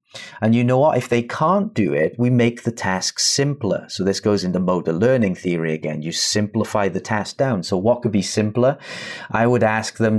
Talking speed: 210 wpm